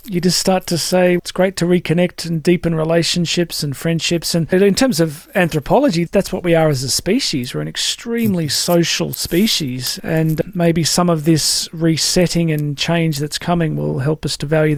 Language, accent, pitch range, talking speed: English, Australian, 155-175 Hz, 185 wpm